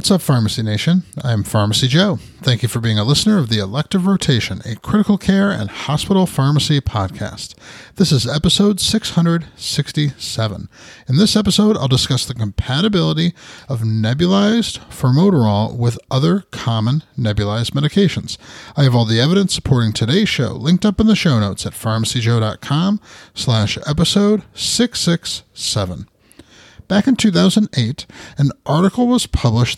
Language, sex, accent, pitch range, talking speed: English, male, American, 115-185 Hz, 140 wpm